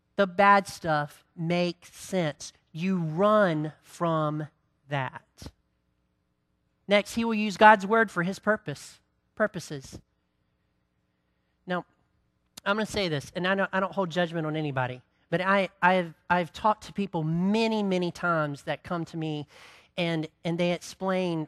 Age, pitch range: 40-59, 150-205 Hz